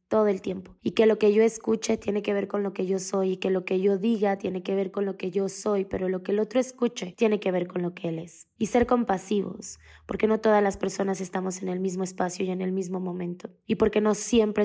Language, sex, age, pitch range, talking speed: Spanish, female, 20-39, 190-210 Hz, 275 wpm